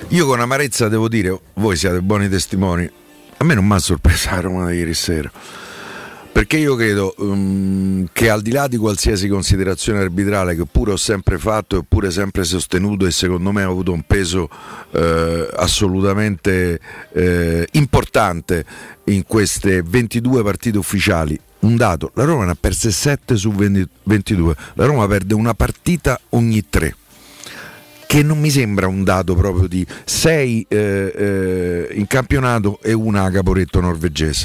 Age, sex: 50-69, male